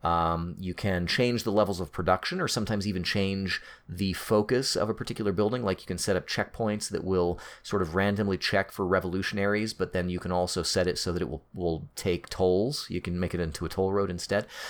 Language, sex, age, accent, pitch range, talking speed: English, male, 30-49, American, 90-105 Hz, 225 wpm